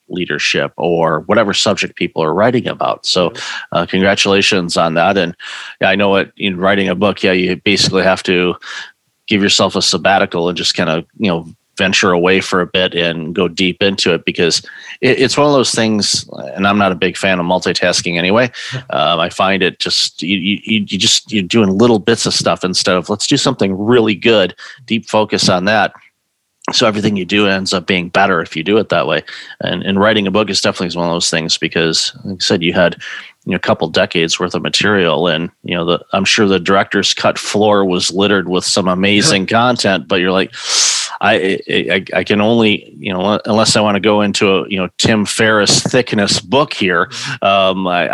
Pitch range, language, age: 90-105 Hz, English, 40-59